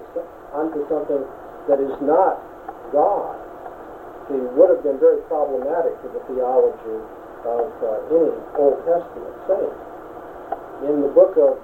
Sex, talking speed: male, 130 wpm